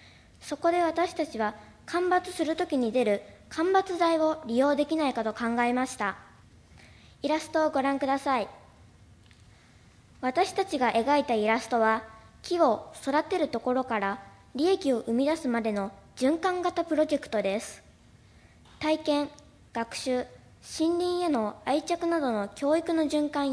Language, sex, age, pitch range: Japanese, male, 20-39, 225-320 Hz